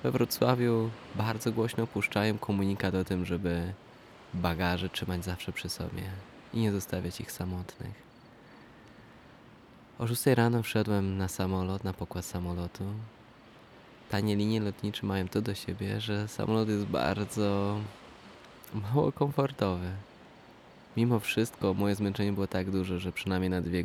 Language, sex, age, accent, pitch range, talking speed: Polish, male, 20-39, native, 95-110 Hz, 130 wpm